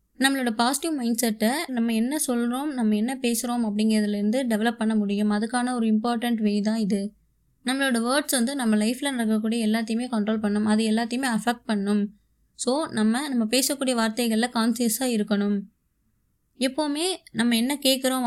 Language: Tamil